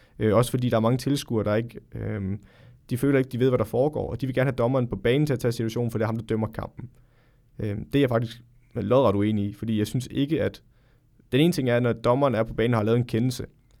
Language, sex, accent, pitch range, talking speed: Danish, male, native, 110-130 Hz, 295 wpm